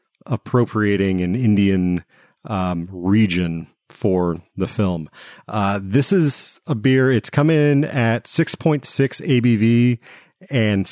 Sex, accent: male, American